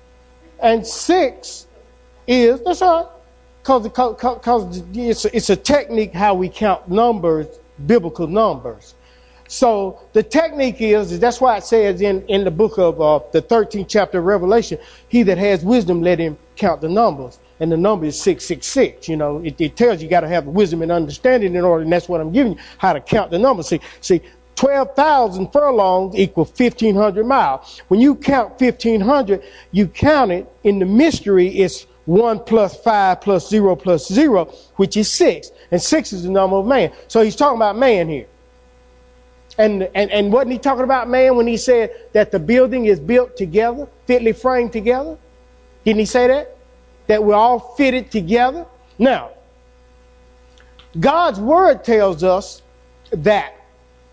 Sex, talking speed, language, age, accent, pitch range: male, 170 wpm, English, 50-69, American, 170-245 Hz